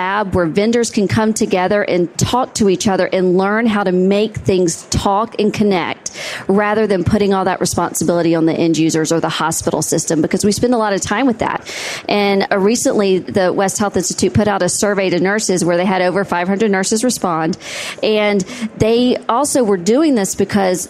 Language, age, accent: English, 40-59, American